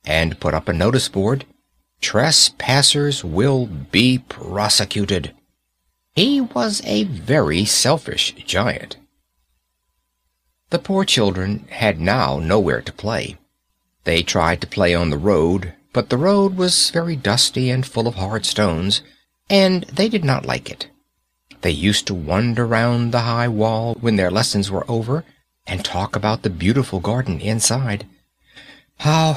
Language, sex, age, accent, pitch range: Korean, male, 60-79, American, 90-130 Hz